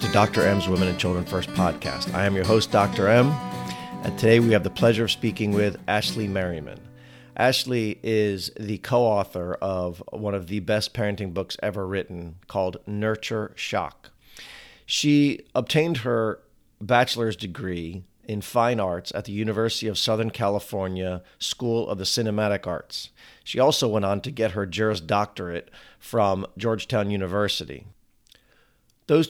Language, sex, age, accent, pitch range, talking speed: English, male, 40-59, American, 95-115 Hz, 150 wpm